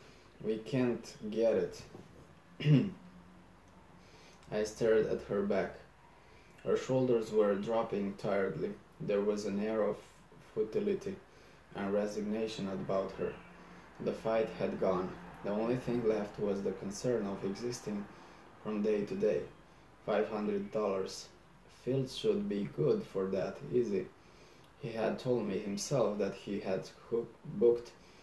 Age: 20-39